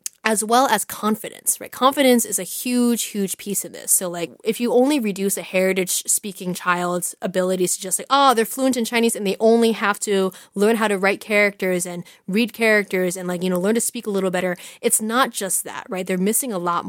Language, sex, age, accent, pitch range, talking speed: English, female, 10-29, American, 180-220 Hz, 225 wpm